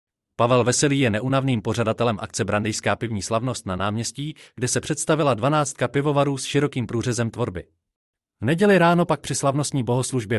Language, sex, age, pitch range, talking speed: Czech, male, 30-49, 105-150 Hz, 155 wpm